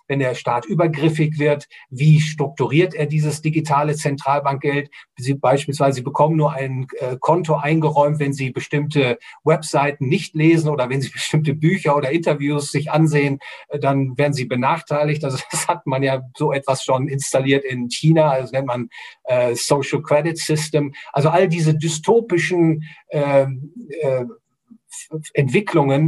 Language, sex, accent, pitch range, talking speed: German, male, German, 135-155 Hz, 150 wpm